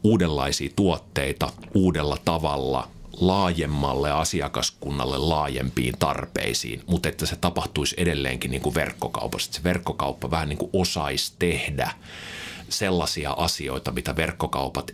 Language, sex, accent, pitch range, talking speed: Finnish, male, native, 70-90 Hz, 115 wpm